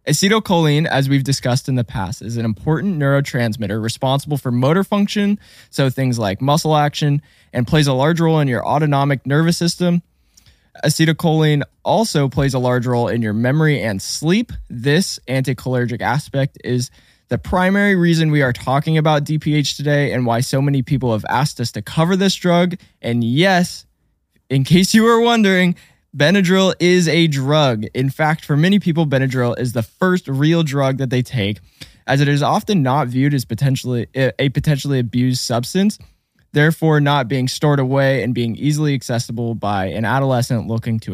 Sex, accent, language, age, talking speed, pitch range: male, American, English, 20-39, 170 wpm, 120-160 Hz